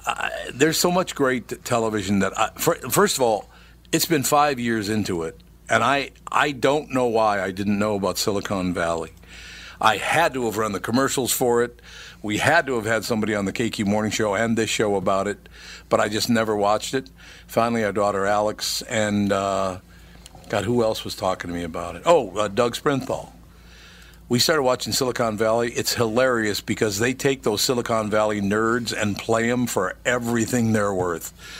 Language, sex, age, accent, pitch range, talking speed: English, male, 50-69, American, 100-125 Hz, 190 wpm